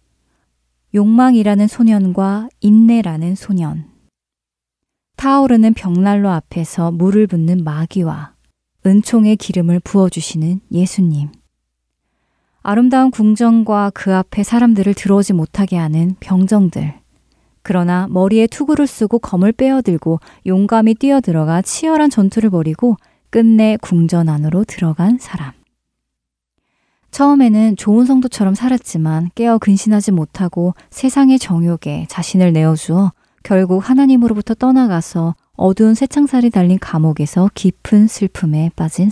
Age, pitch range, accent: 20-39, 165-220 Hz, native